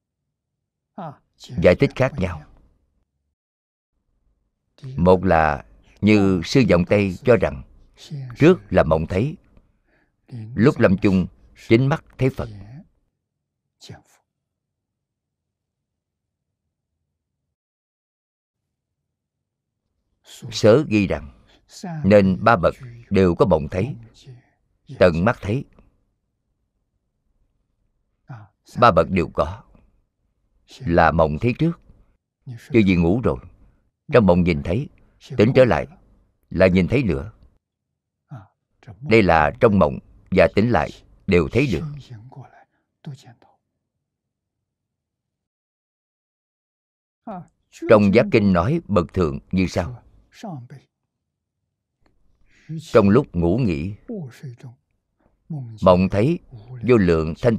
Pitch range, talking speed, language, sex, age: 90-125 Hz, 90 wpm, Vietnamese, male, 50-69